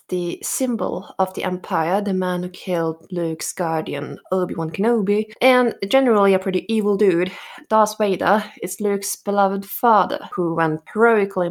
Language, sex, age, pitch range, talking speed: English, female, 20-39, 180-230 Hz, 145 wpm